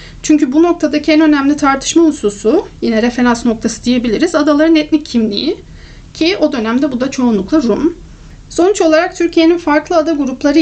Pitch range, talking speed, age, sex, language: 250-325 Hz, 155 wpm, 40-59, female, Turkish